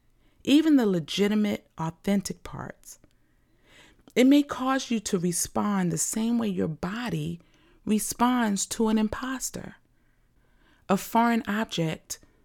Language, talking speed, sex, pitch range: English, 110 wpm, female, 175-245 Hz